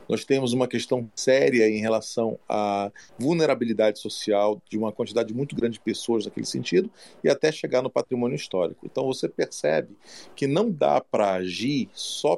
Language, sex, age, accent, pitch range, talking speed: Portuguese, male, 40-59, Brazilian, 110-140 Hz, 165 wpm